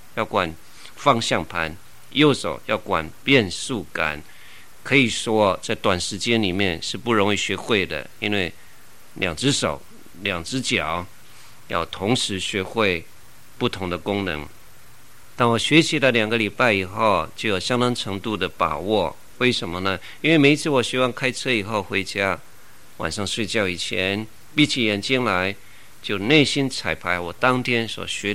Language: Chinese